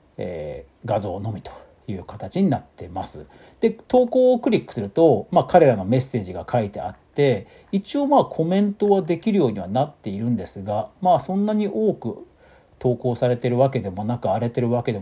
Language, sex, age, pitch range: Japanese, male, 40-59, 110-180 Hz